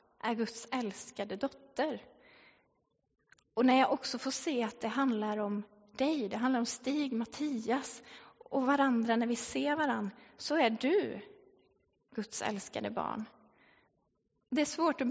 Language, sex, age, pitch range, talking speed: Swedish, female, 20-39, 210-265 Hz, 145 wpm